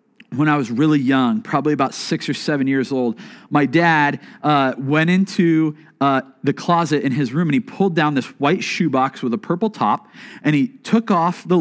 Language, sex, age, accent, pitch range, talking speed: English, male, 40-59, American, 135-200 Hz, 200 wpm